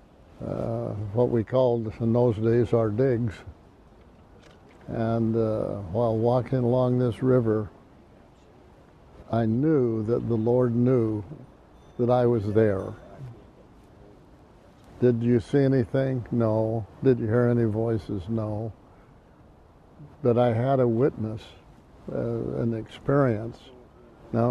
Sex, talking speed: male, 115 wpm